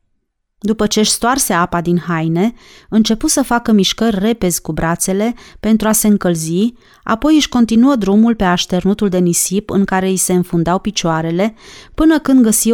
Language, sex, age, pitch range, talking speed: Romanian, female, 30-49, 175-225 Hz, 160 wpm